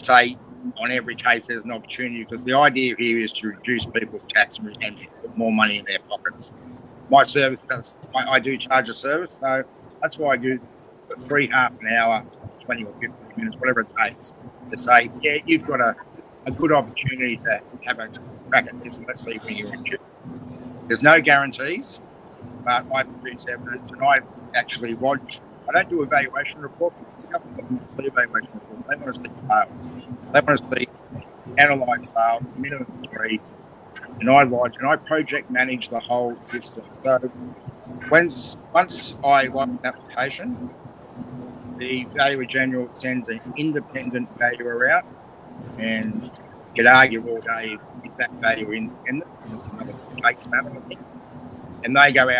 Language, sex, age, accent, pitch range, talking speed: English, male, 50-69, Australian, 120-135 Hz, 165 wpm